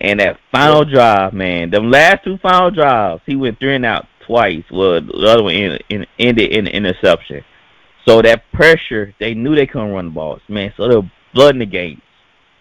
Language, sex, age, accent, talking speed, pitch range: English, male, 20-39, American, 215 wpm, 95-130 Hz